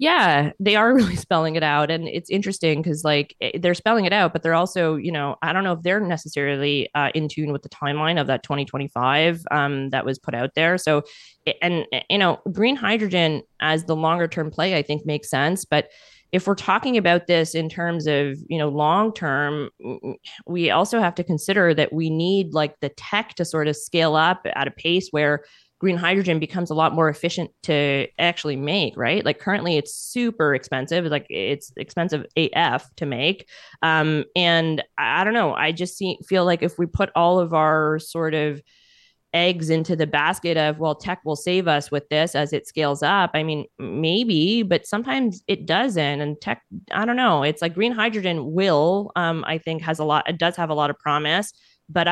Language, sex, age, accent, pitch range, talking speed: English, female, 20-39, American, 150-180 Hz, 205 wpm